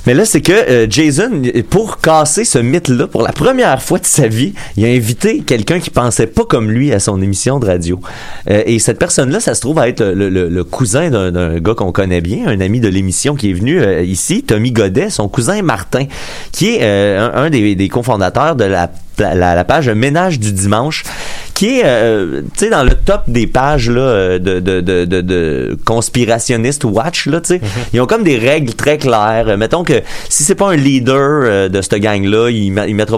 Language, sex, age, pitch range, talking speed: French, male, 30-49, 100-140 Hz, 215 wpm